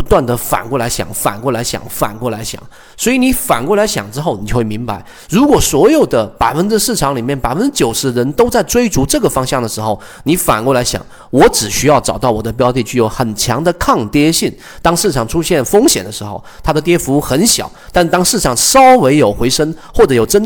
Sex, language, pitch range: male, Chinese, 115-160 Hz